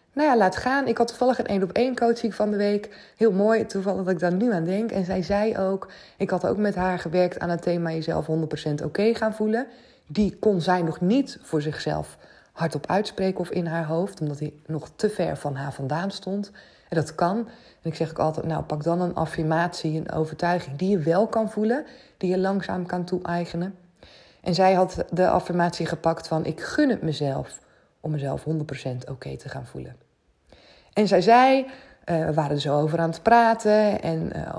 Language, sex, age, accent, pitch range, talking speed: Dutch, female, 20-39, Dutch, 160-205 Hz, 215 wpm